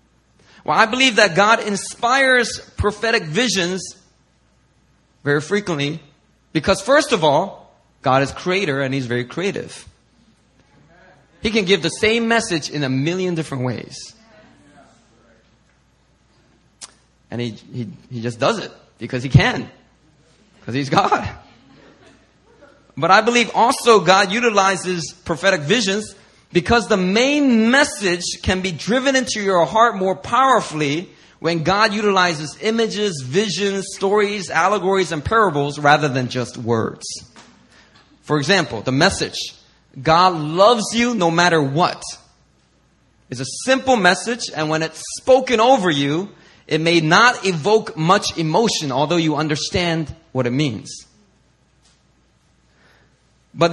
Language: English